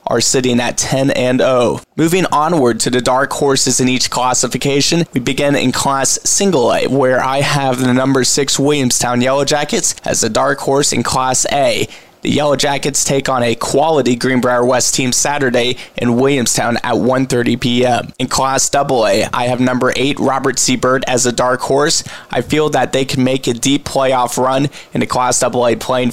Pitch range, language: 125-140 Hz, English